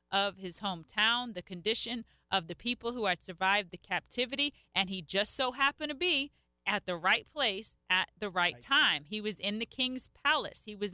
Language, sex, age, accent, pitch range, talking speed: English, female, 40-59, American, 185-230 Hz, 195 wpm